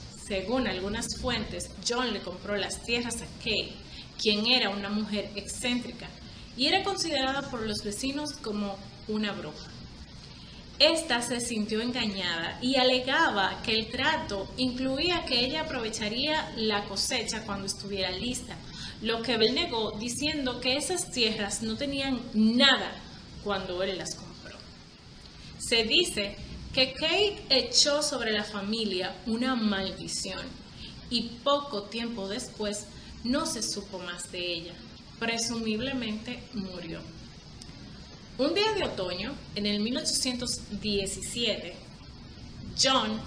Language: Spanish